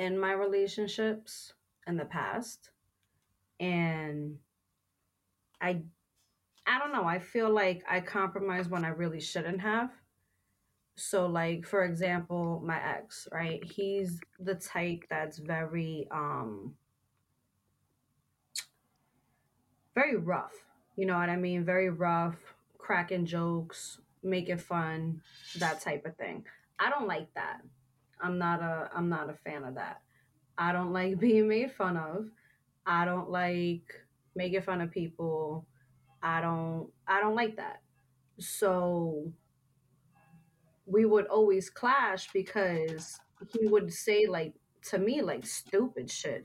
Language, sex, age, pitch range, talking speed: English, female, 20-39, 160-195 Hz, 130 wpm